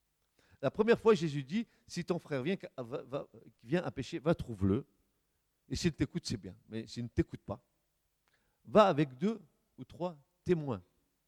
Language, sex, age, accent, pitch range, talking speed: French, male, 50-69, French, 115-190 Hz, 160 wpm